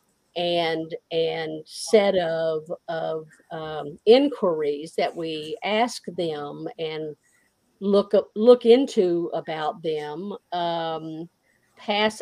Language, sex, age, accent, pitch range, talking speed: English, female, 50-69, American, 170-215 Hz, 100 wpm